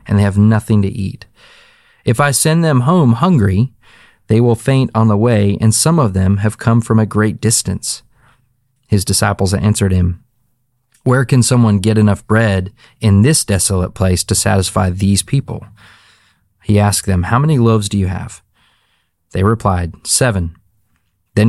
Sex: male